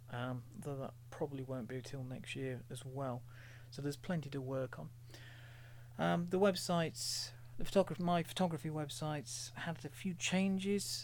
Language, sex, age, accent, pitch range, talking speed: English, male, 40-59, British, 120-145 Hz, 160 wpm